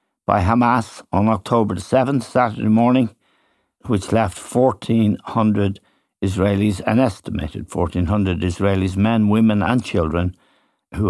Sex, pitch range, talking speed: male, 95-115 Hz, 115 wpm